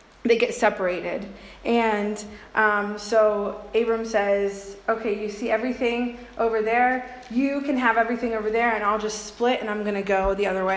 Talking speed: 180 wpm